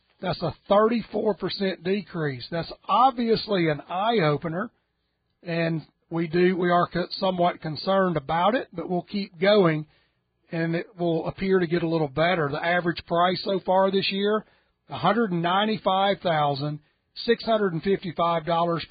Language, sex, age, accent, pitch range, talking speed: English, male, 40-59, American, 155-195 Hz, 120 wpm